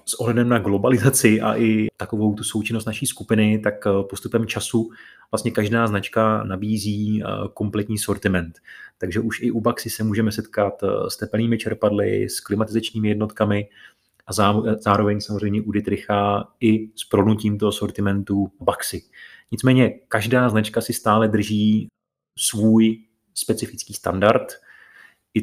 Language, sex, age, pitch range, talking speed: Czech, male, 30-49, 105-110 Hz, 130 wpm